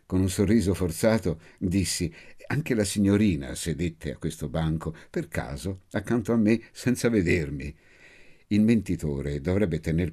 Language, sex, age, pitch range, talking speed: Italian, male, 60-79, 80-105 Hz, 135 wpm